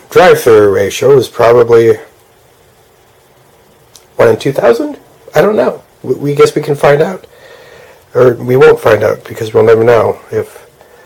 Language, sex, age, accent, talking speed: English, male, 30-49, American, 150 wpm